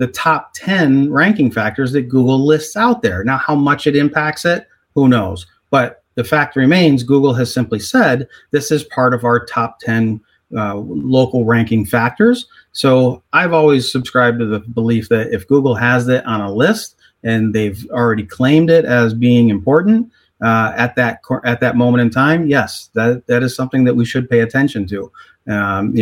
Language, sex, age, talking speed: English, male, 30-49, 185 wpm